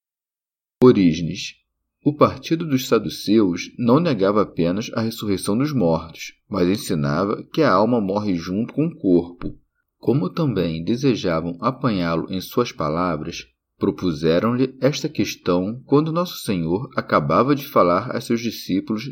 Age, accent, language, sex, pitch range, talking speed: 40-59, Brazilian, Portuguese, male, 85-135 Hz, 130 wpm